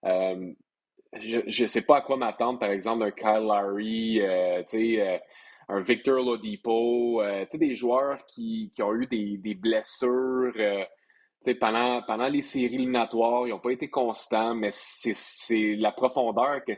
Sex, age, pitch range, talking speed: male, 30-49, 105-130 Hz, 155 wpm